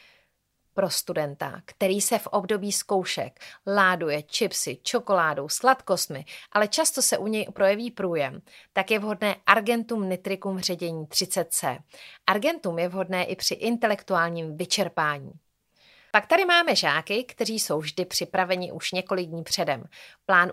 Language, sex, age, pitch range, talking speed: Czech, female, 30-49, 180-240 Hz, 130 wpm